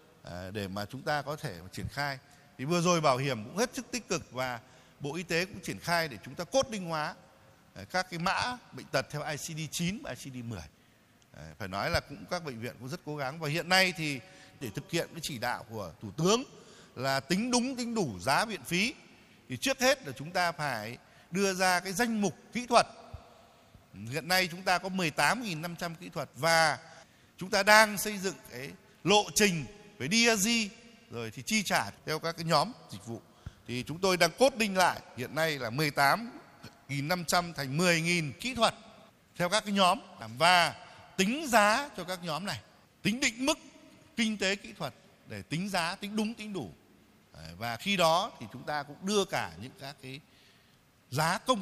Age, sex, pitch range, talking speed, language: 60-79, male, 130-200 Hz, 195 wpm, Vietnamese